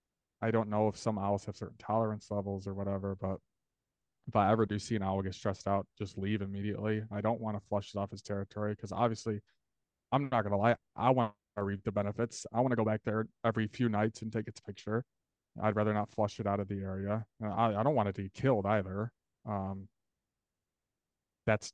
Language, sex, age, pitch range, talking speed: English, male, 20-39, 100-115 Hz, 220 wpm